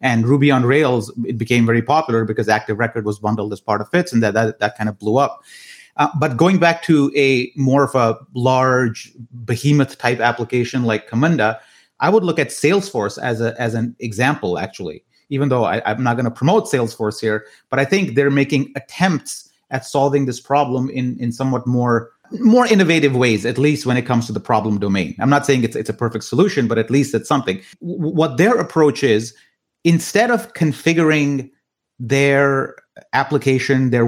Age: 30-49